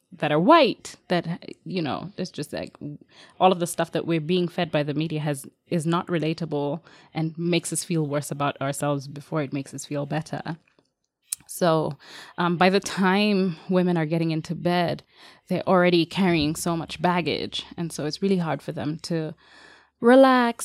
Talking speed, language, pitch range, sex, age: 180 wpm, English, 155-185 Hz, female, 20-39